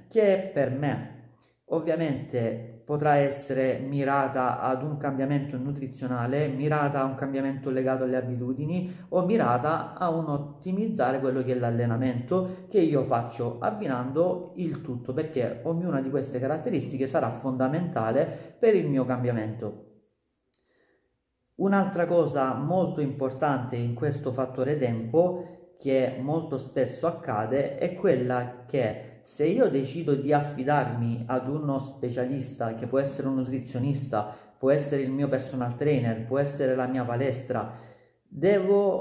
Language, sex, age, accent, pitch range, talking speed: Italian, male, 40-59, native, 125-155 Hz, 130 wpm